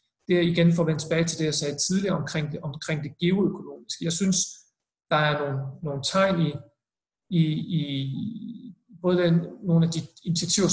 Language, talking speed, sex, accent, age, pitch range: Danish, 185 wpm, male, native, 40-59, 150-180 Hz